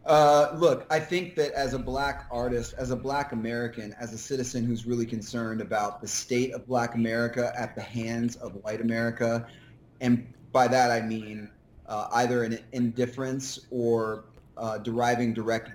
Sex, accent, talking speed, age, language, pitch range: male, American, 170 wpm, 30-49, English, 110-125 Hz